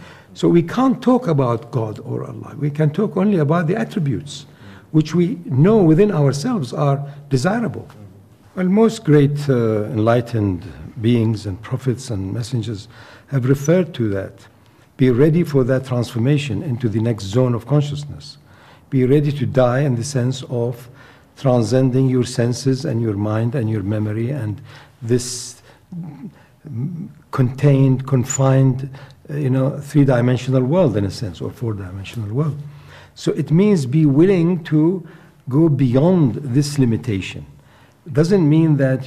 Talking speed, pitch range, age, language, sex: 145 wpm, 115-150 Hz, 60-79, English, male